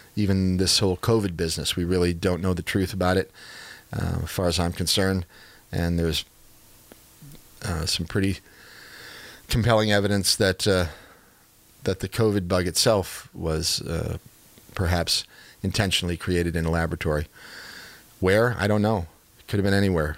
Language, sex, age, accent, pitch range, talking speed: English, male, 40-59, American, 85-100 Hz, 150 wpm